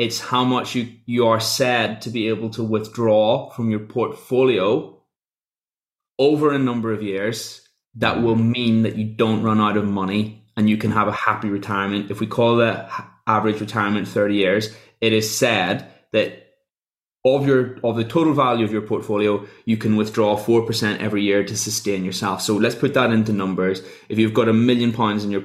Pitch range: 105-115 Hz